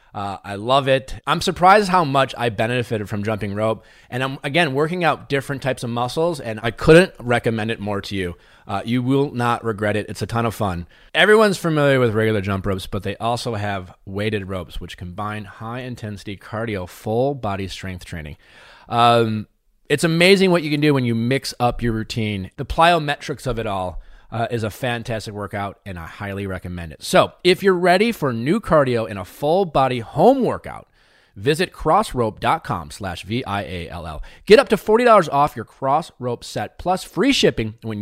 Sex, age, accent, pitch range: male, 30-49, American, 100-140 Hz